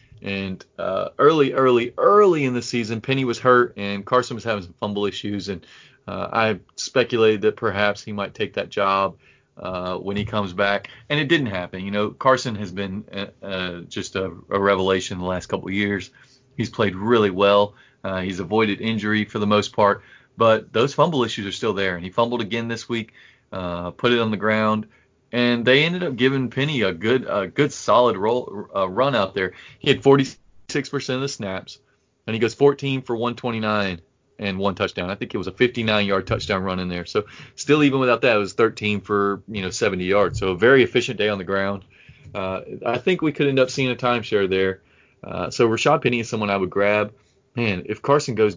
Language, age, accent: English, 30-49, American